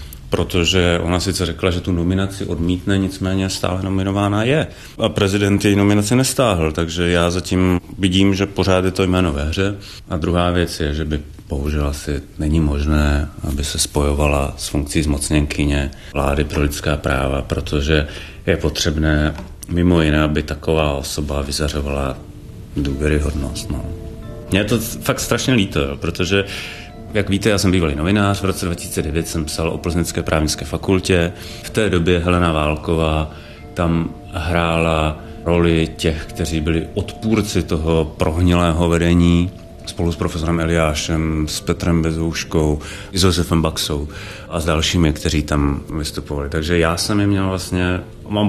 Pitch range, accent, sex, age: 75-95 Hz, native, male, 30-49